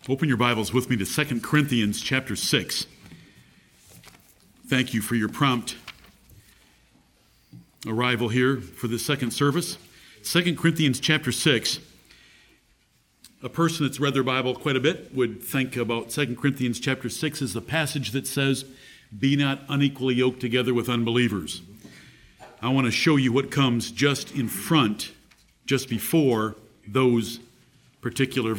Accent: American